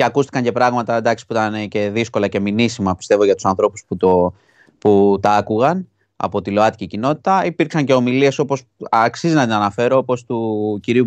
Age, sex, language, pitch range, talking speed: 20-39, male, Greek, 110-155 Hz, 180 wpm